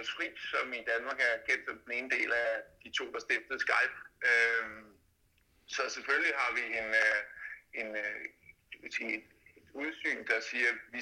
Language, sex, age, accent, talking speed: Danish, male, 60-79, native, 160 wpm